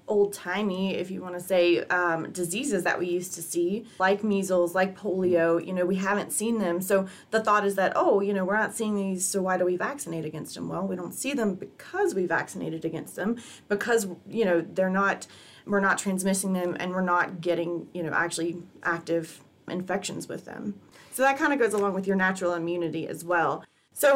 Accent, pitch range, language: American, 180-210 Hz, English